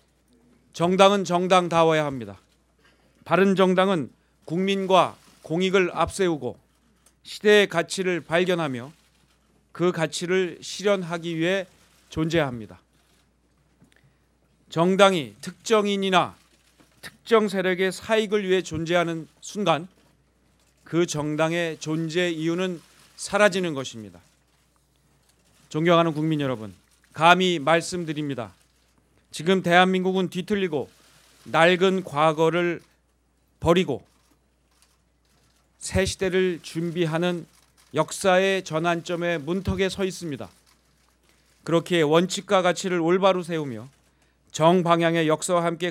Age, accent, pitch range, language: 40-59, native, 150-185 Hz, Korean